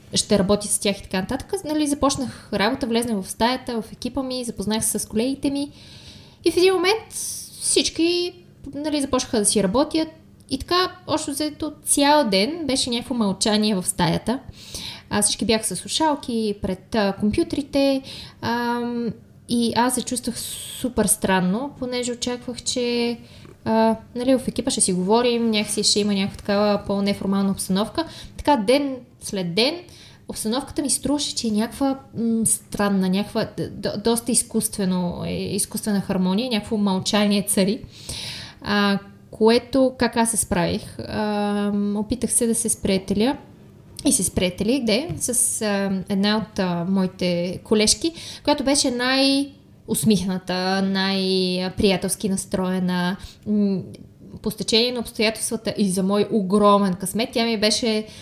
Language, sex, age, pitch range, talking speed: Bulgarian, female, 20-39, 200-255 Hz, 135 wpm